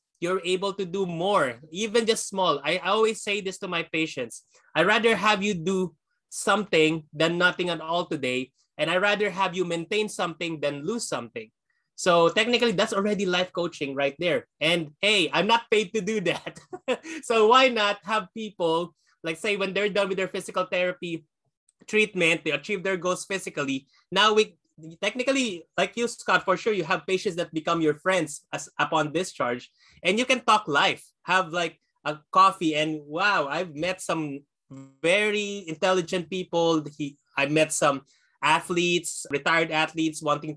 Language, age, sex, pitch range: English, 20-39, male, 155-205 Hz